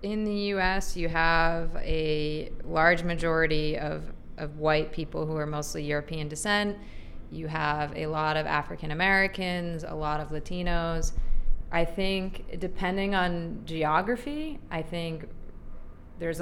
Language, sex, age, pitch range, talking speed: English, female, 30-49, 150-175 Hz, 130 wpm